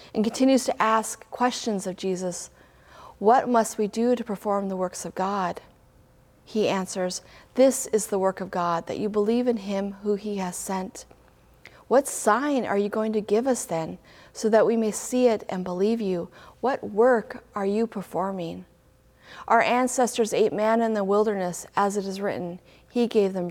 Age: 40-59